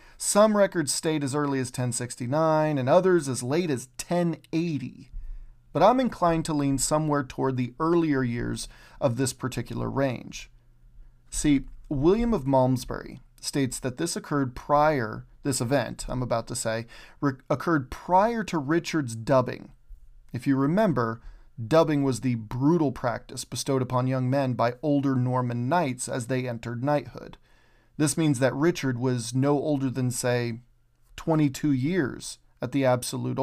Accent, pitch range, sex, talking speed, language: American, 125-155 Hz, male, 145 wpm, English